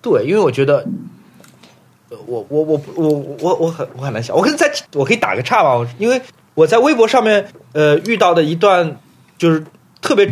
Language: Chinese